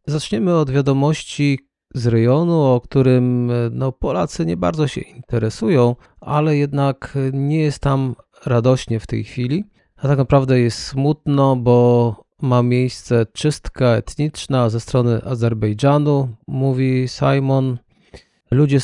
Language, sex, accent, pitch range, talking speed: Polish, male, native, 120-140 Hz, 120 wpm